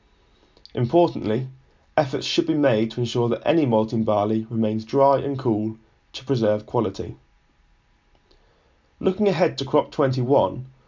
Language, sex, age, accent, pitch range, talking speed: English, male, 20-39, British, 115-145 Hz, 125 wpm